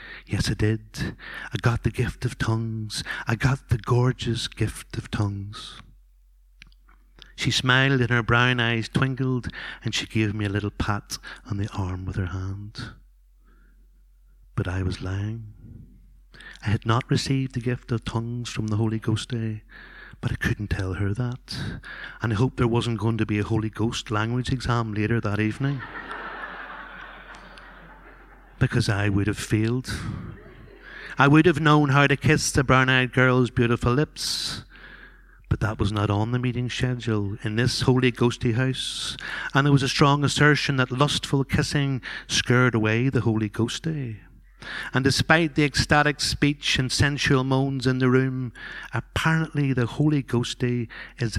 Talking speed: 160 wpm